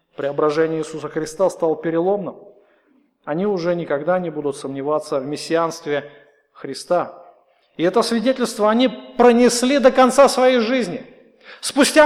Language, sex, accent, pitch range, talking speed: Russian, male, native, 205-265 Hz, 120 wpm